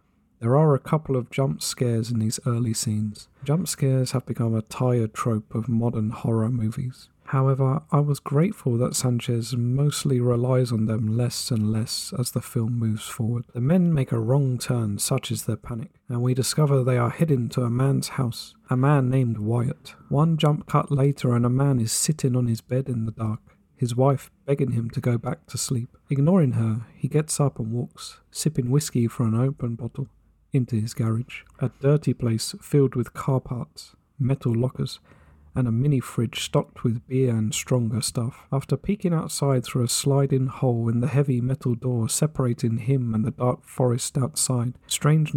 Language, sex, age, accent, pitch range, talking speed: English, male, 40-59, British, 115-140 Hz, 190 wpm